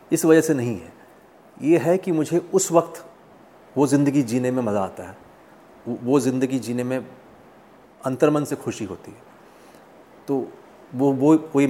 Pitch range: 110-145 Hz